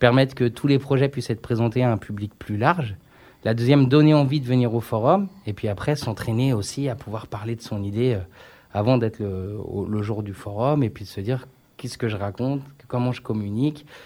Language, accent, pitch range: French, French, 110-135 Hz